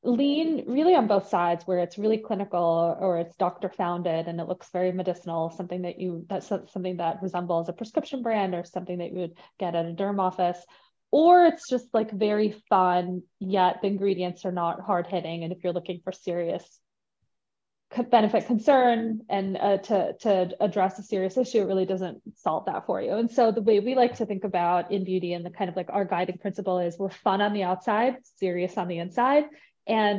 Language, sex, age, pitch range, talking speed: English, female, 20-39, 180-220 Hz, 205 wpm